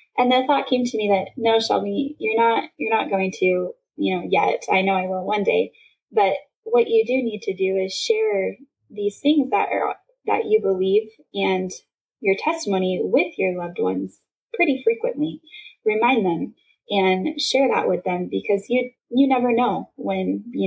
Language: English